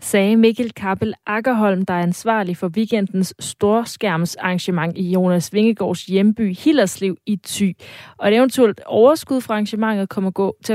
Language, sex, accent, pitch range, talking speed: Danish, female, native, 180-220 Hz, 140 wpm